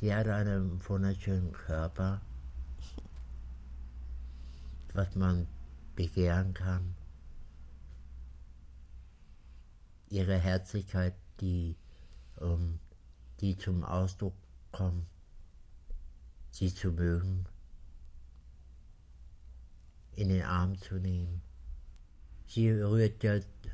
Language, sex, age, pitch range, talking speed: German, male, 60-79, 70-95 Hz, 65 wpm